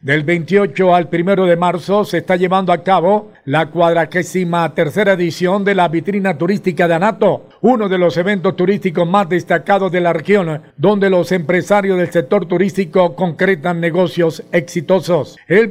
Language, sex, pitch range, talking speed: Spanish, male, 170-200 Hz, 155 wpm